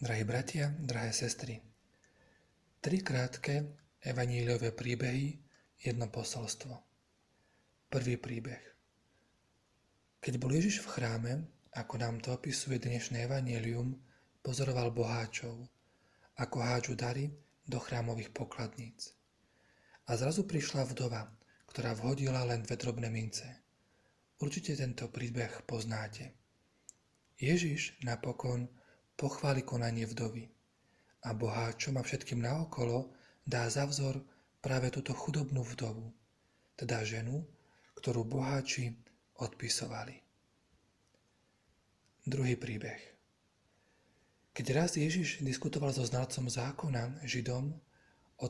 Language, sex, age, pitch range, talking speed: Slovak, male, 40-59, 115-135 Hz, 95 wpm